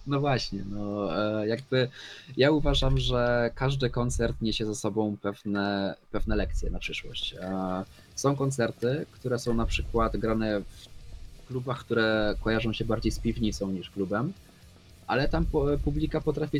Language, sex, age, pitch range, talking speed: Polish, male, 20-39, 100-125 Hz, 135 wpm